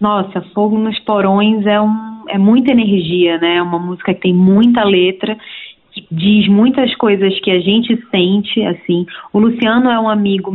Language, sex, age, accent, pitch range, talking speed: Portuguese, female, 20-39, Brazilian, 190-225 Hz, 175 wpm